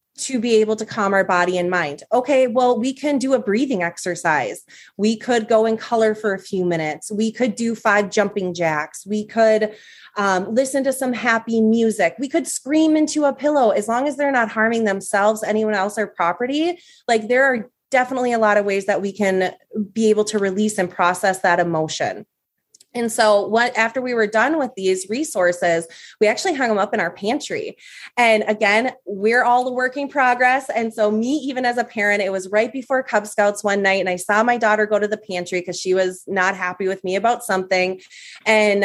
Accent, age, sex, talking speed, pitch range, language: American, 20-39, female, 210 wpm, 190-245 Hz, English